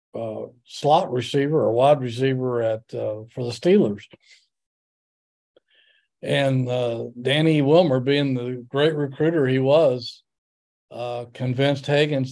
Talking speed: 115 wpm